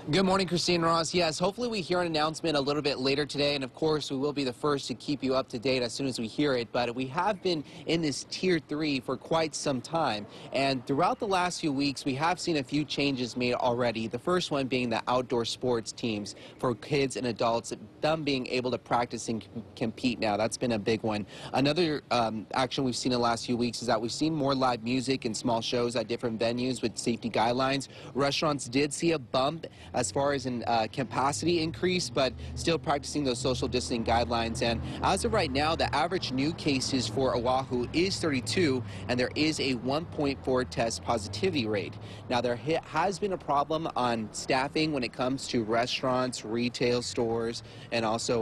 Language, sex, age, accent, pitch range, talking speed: English, male, 30-49, American, 115-145 Hz, 210 wpm